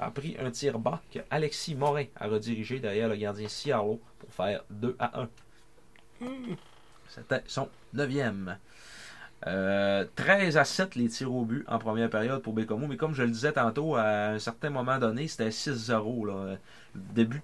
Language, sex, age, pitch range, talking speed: French, male, 30-49, 115-160 Hz, 170 wpm